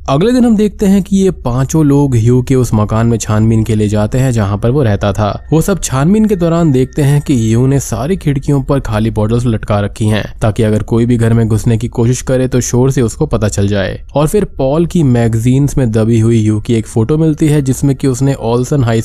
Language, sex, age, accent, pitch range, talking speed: Hindi, male, 20-39, native, 105-135 Hz, 245 wpm